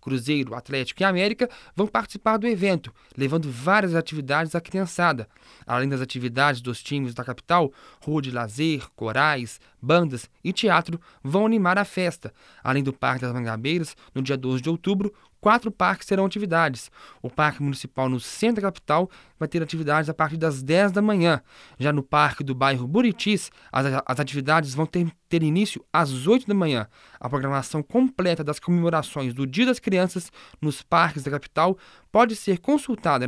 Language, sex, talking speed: Portuguese, male, 165 wpm